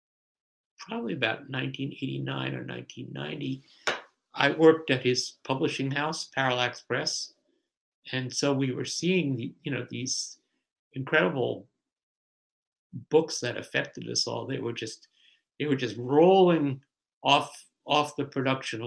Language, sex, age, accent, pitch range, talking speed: English, male, 60-79, American, 125-140 Hz, 125 wpm